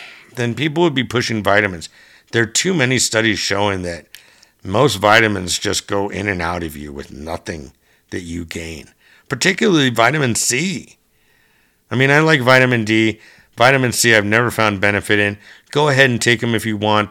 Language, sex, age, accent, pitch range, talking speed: English, male, 50-69, American, 100-115 Hz, 180 wpm